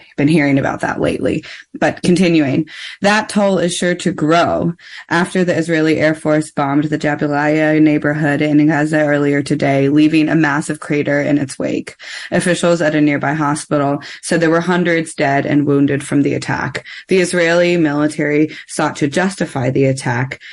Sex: female